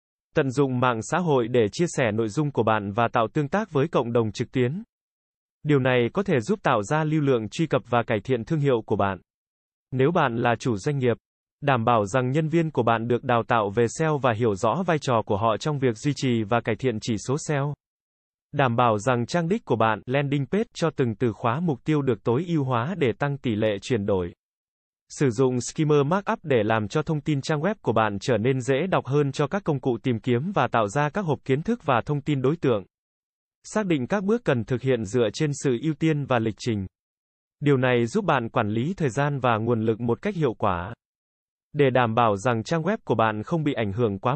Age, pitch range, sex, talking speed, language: 20-39, 115-155 Hz, male, 240 wpm, Vietnamese